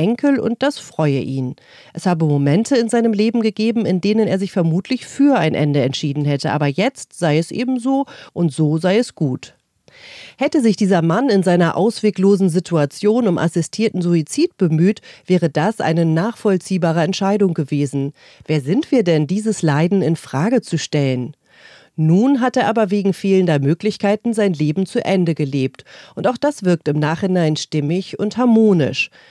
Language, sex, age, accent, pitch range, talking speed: German, female, 40-59, German, 160-215 Hz, 165 wpm